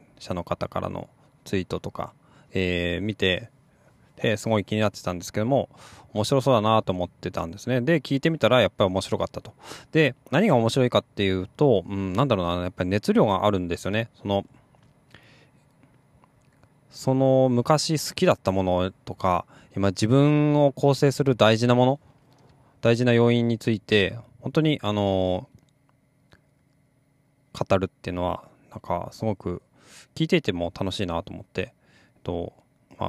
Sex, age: male, 20-39